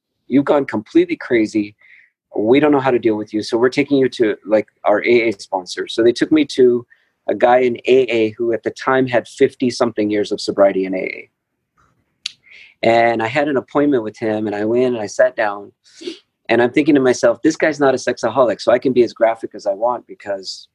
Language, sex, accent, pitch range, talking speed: English, male, American, 105-125 Hz, 220 wpm